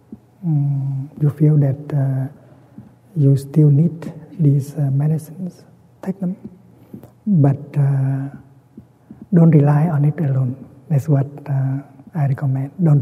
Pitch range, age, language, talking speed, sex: 135-155 Hz, 60-79, English, 120 wpm, male